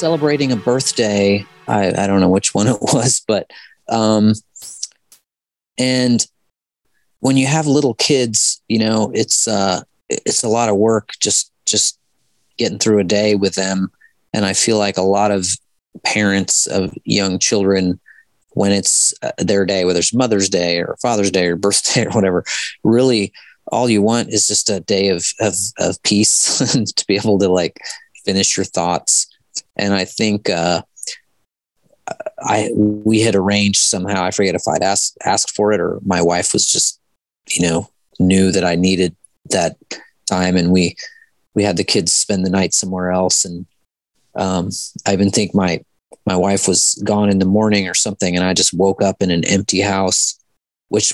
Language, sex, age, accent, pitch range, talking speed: English, male, 30-49, American, 95-110 Hz, 175 wpm